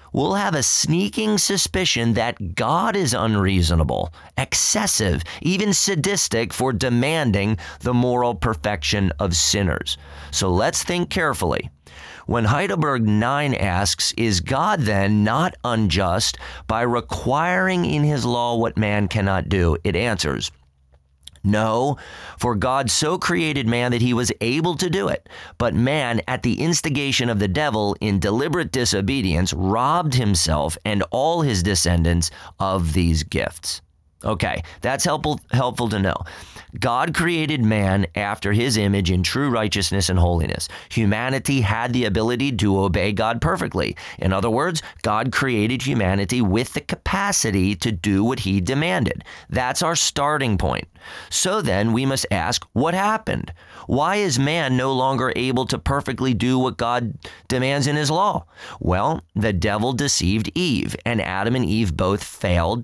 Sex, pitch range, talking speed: male, 95-130 Hz, 145 wpm